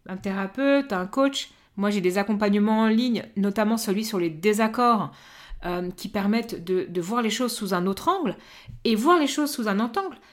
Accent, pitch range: French, 200-275 Hz